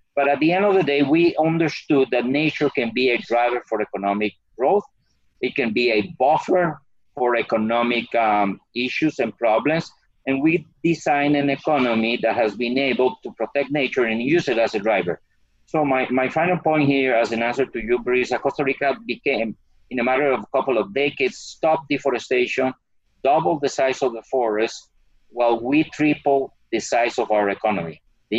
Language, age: English, 50-69